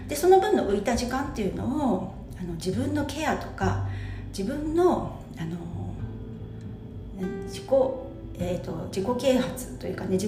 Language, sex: Japanese, female